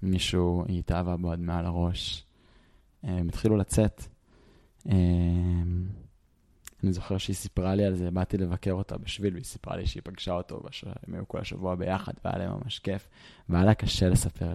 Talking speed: 170 wpm